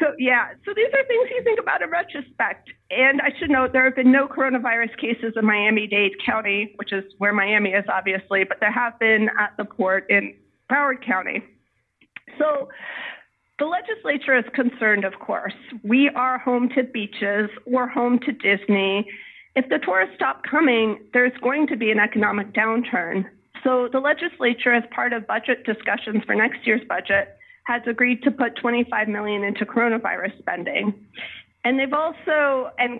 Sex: female